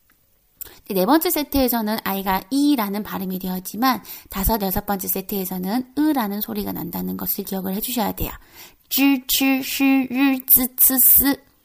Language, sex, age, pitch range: Korean, female, 20-39, 200-265 Hz